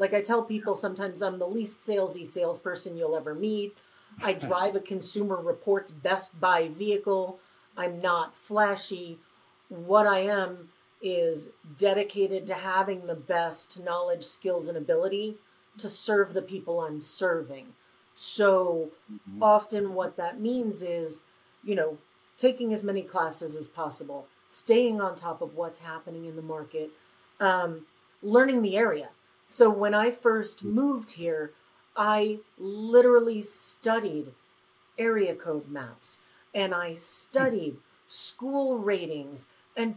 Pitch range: 170-225 Hz